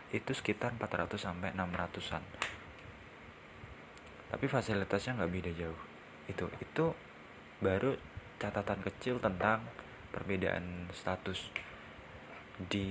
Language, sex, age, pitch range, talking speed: Indonesian, male, 20-39, 90-110 Hz, 90 wpm